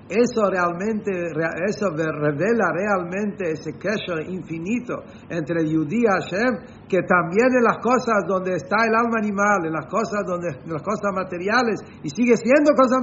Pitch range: 150-205 Hz